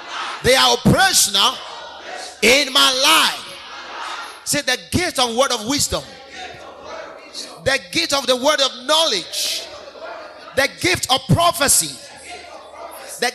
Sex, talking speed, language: male, 110 wpm, English